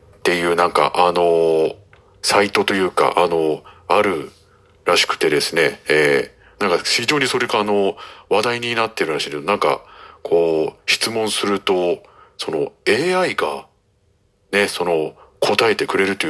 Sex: male